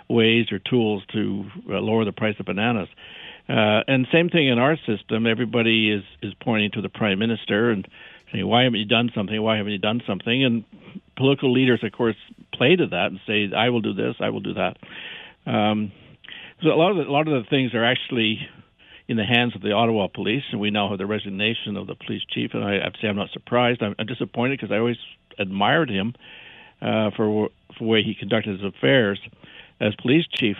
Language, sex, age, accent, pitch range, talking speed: English, male, 60-79, American, 105-125 Hz, 220 wpm